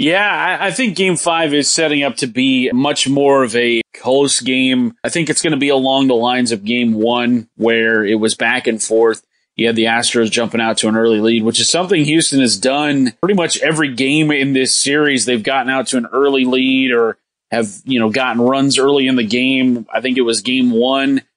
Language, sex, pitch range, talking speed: English, male, 120-155 Hz, 225 wpm